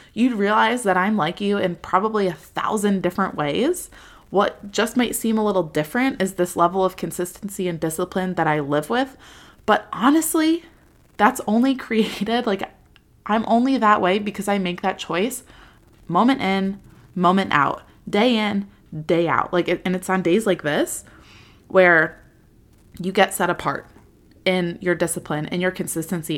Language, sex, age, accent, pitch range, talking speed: English, female, 20-39, American, 175-210 Hz, 160 wpm